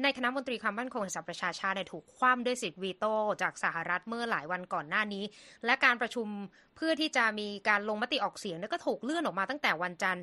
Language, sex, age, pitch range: Thai, female, 20-39, 190-245 Hz